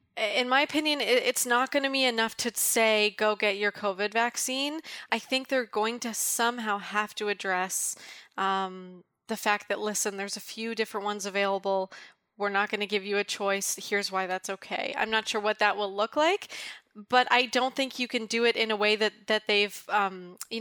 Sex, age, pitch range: female, 20-39, 200-230 Hz